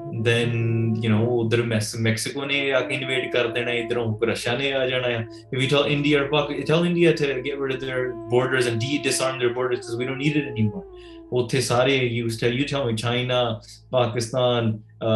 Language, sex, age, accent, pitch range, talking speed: English, male, 20-39, Indian, 120-150 Hz, 135 wpm